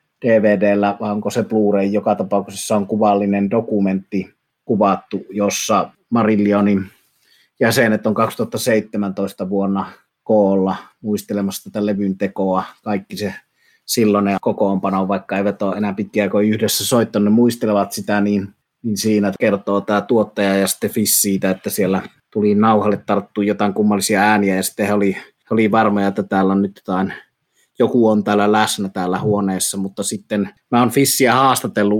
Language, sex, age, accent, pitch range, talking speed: Finnish, male, 30-49, native, 95-110 Hz, 135 wpm